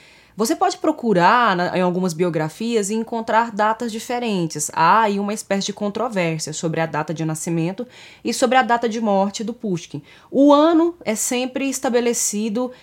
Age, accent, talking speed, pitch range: 20-39, Brazilian, 160 wpm, 170-235 Hz